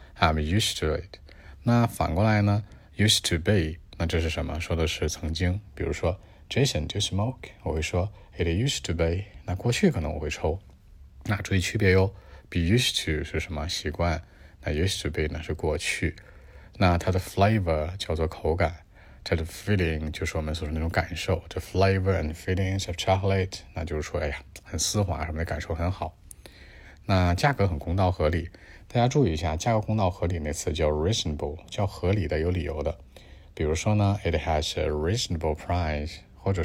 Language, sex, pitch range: Chinese, male, 80-100 Hz